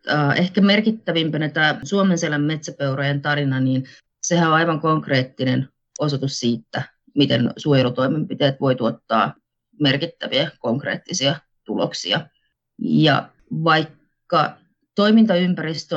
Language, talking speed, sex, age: Finnish, 85 wpm, female, 30-49